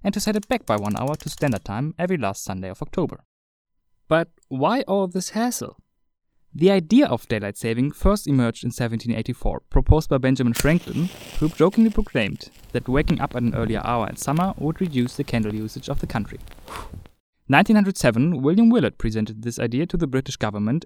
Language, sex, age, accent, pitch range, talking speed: English, male, 20-39, German, 120-180 Hz, 185 wpm